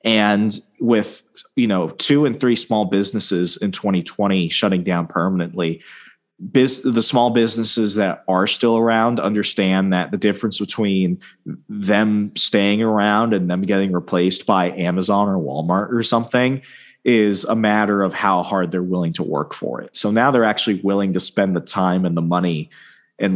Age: 30-49